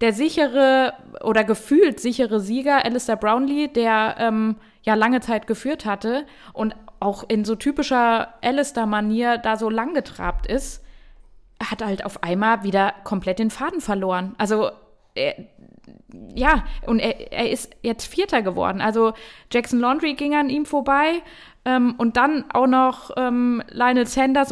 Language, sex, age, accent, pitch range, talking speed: German, female, 20-39, German, 205-250 Hz, 145 wpm